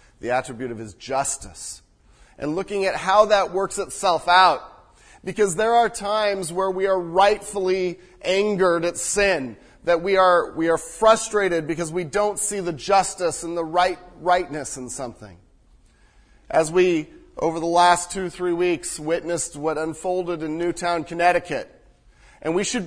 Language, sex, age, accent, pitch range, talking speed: English, male, 40-59, American, 150-185 Hz, 155 wpm